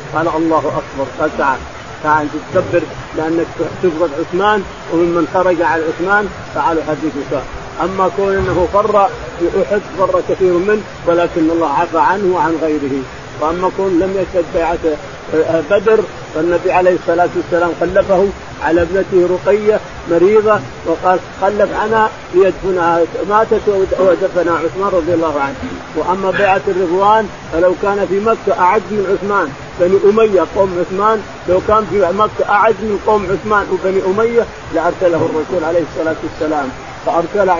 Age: 50-69